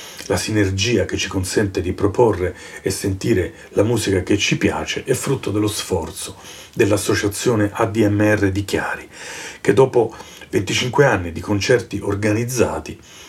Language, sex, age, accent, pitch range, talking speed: Italian, male, 40-59, native, 95-110 Hz, 130 wpm